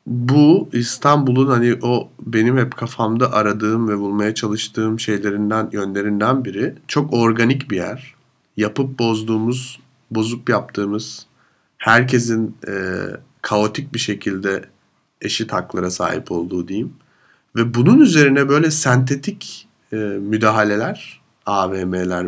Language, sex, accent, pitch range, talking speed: Turkish, male, native, 105-140 Hz, 110 wpm